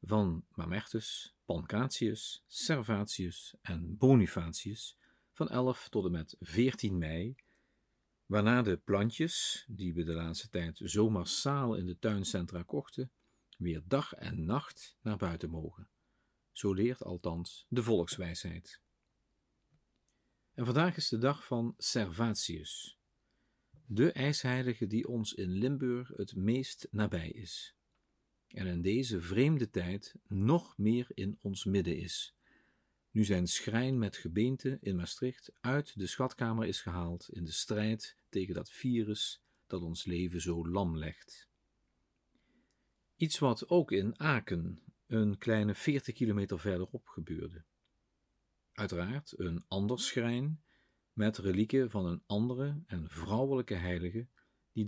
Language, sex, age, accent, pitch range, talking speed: Dutch, male, 50-69, Dutch, 90-125 Hz, 125 wpm